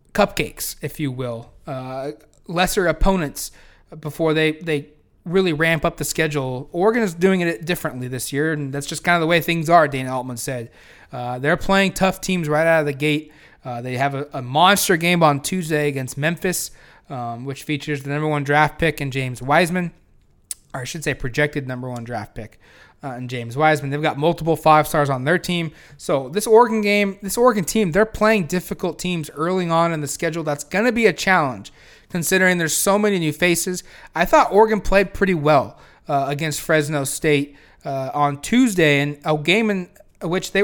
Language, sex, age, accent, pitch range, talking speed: English, male, 20-39, American, 145-190 Hz, 200 wpm